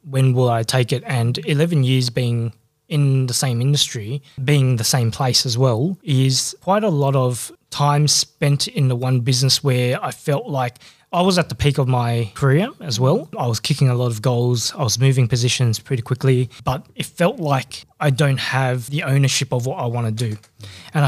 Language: English